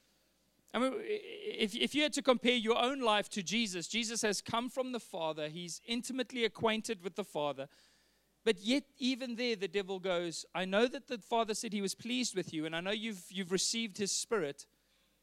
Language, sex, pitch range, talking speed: English, male, 180-230 Hz, 200 wpm